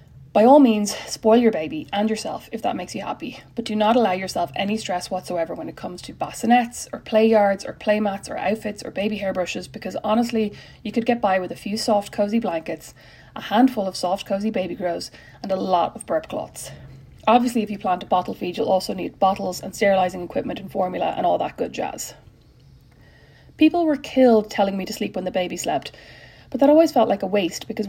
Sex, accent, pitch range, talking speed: female, Irish, 185-225 Hz, 220 wpm